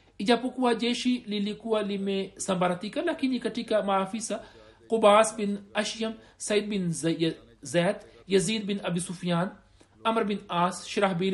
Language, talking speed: Swahili, 105 wpm